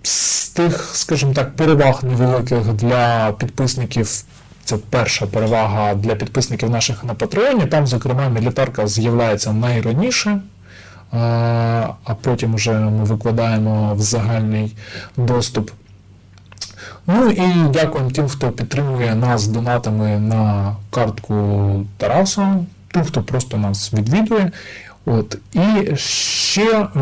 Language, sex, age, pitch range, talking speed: Ukrainian, male, 20-39, 110-140 Hz, 105 wpm